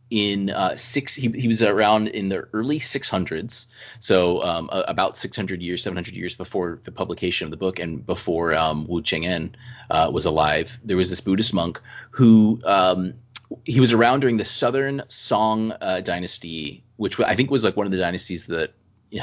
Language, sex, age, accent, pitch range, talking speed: English, male, 30-49, American, 90-120 Hz, 185 wpm